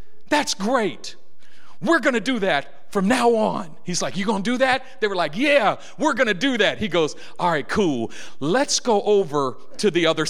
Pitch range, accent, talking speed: 180-260 Hz, American, 200 wpm